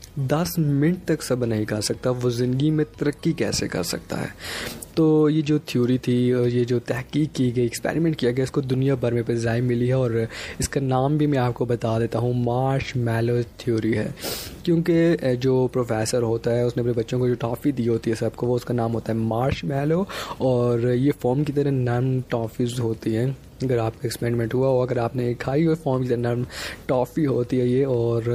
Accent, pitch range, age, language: native, 115-135 Hz, 20-39, Hindi